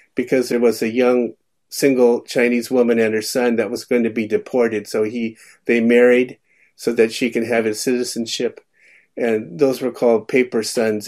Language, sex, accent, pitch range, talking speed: English, male, American, 110-130 Hz, 185 wpm